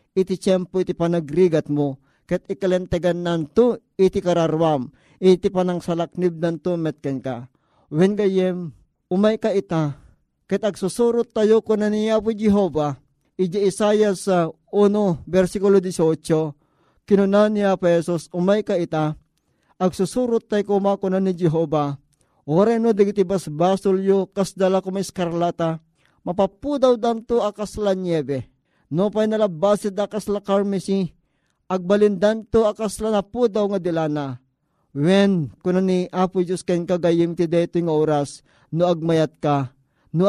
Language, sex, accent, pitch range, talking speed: Filipino, male, native, 160-195 Hz, 120 wpm